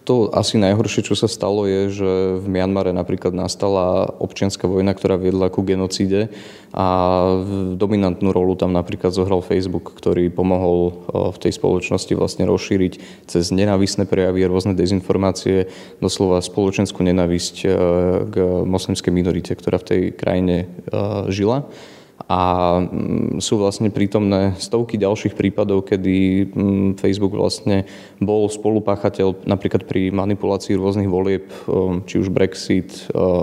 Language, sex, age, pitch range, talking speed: Slovak, male, 20-39, 95-100 Hz, 125 wpm